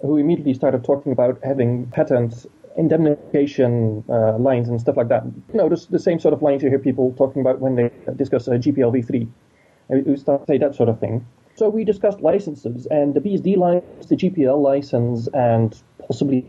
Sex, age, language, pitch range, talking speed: male, 30-49, English, 120-155 Hz, 200 wpm